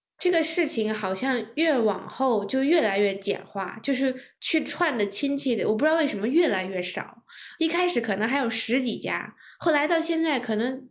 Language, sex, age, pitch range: Chinese, female, 10-29, 200-260 Hz